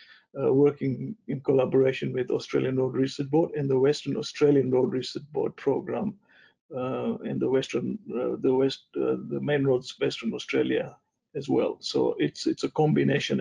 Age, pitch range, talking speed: 60-79, 135-160 Hz, 165 wpm